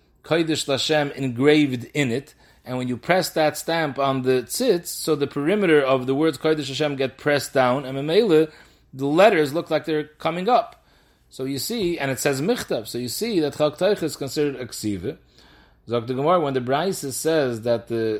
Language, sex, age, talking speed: English, male, 30-49, 185 wpm